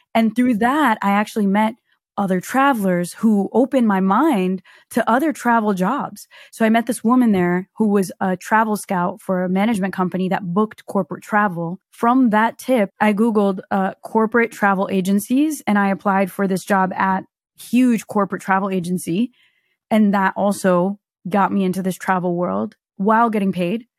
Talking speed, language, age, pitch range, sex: 170 wpm, English, 20-39, 185-220 Hz, female